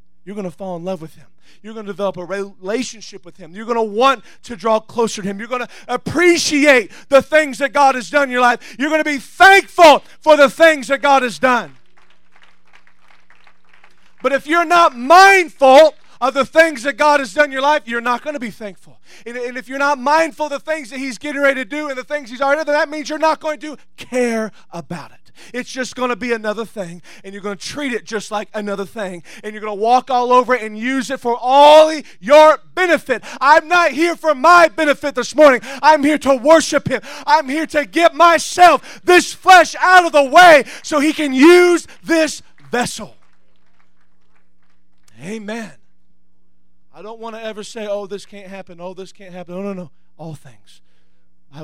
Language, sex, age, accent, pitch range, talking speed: English, male, 30-49, American, 185-290 Hz, 215 wpm